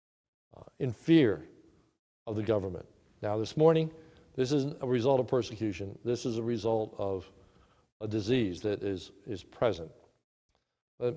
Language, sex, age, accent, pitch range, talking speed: English, male, 60-79, American, 115-160 Hz, 140 wpm